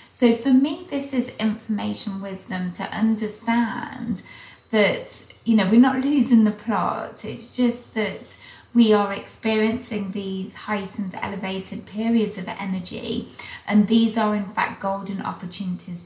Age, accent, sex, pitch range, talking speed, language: 20-39, British, female, 190-230 Hz, 135 wpm, English